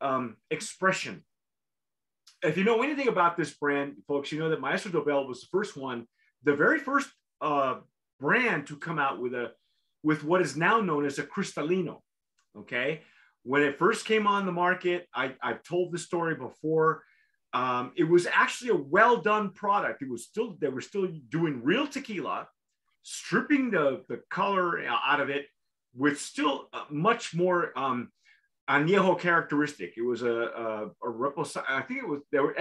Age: 30-49